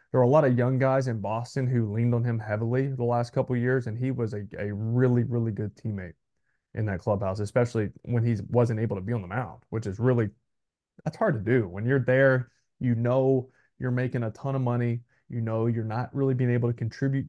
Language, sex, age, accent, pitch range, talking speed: English, male, 20-39, American, 110-130 Hz, 235 wpm